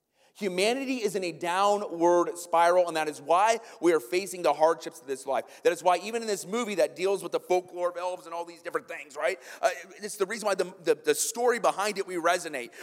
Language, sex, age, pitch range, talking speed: English, male, 30-49, 180-250 Hz, 240 wpm